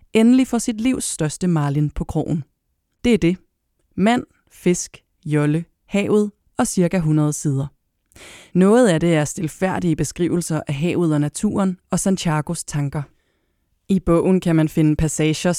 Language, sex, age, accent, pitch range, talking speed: English, female, 30-49, Danish, 155-190 Hz, 145 wpm